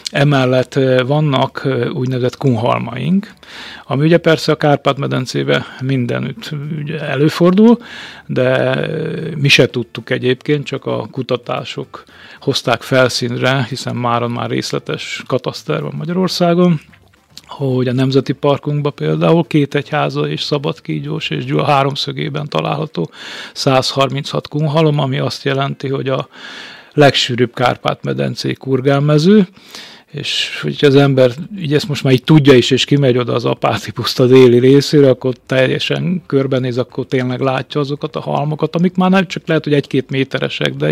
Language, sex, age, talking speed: Hungarian, male, 40-59, 130 wpm